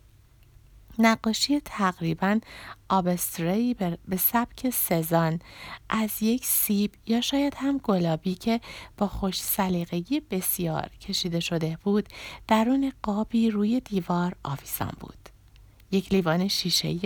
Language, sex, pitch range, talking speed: Persian, female, 165-215 Hz, 105 wpm